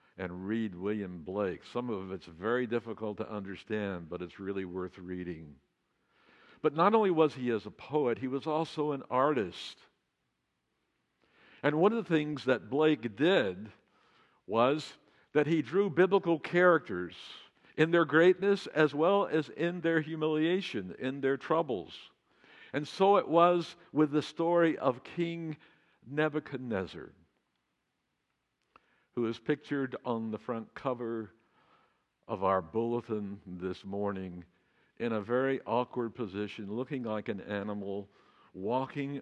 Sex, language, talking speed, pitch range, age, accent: male, English, 135 wpm, 105-155 Hz, 60-79, American